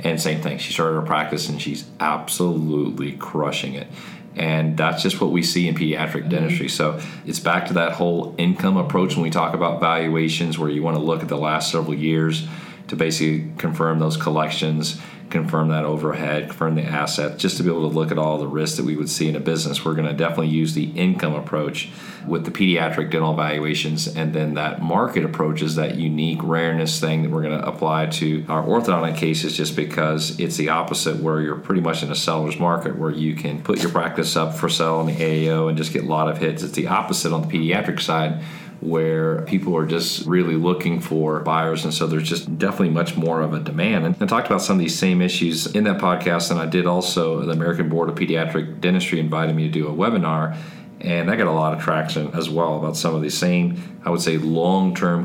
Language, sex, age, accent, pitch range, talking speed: English, male, 40-59, American, 80-85 Hz, 225 wpm